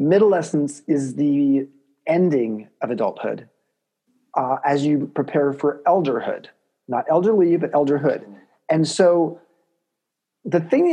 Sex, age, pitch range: male, 40-59, 140-170 Hz